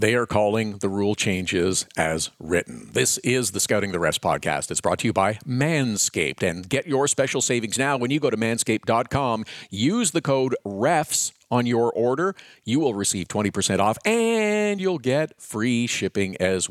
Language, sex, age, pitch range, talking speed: English, male, 50-69, 105-140 Hz, 180 wpm